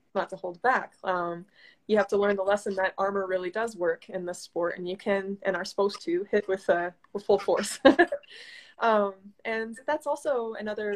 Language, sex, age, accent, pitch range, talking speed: English, female, 20-39, American, 180-215 Hz, 195 wpm